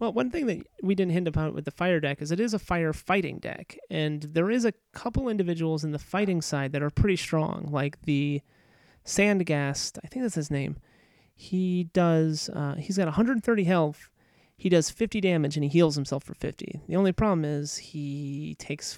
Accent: American